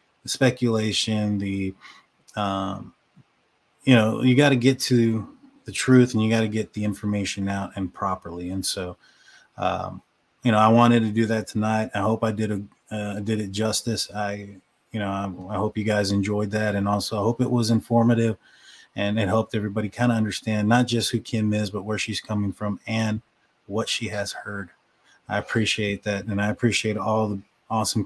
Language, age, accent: English, 20-39, American